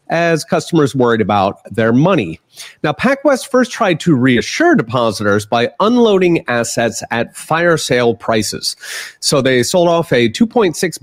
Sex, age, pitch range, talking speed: male, 30-49, 110-170 Hz, 140 wpm